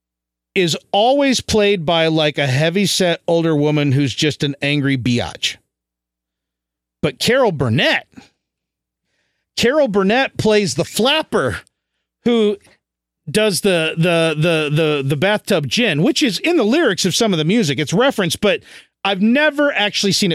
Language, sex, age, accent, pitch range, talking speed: English, male, 40-59, American, 140-195 Hz, 145 wpm